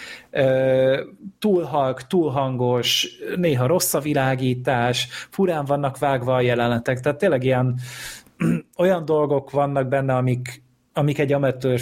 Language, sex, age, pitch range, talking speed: Hungarian, male, 30-49, 125-145 Hz, 110 wpm